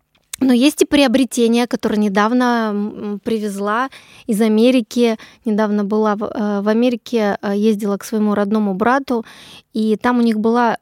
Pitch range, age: 215-250 Hz, 20-39